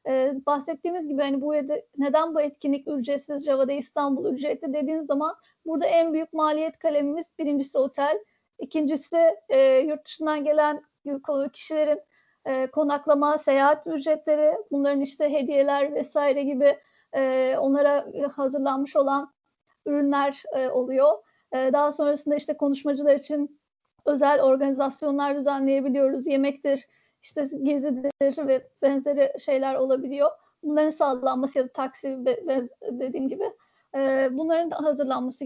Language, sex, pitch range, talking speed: Turkish, female, 275-310 Hz, 115 wpm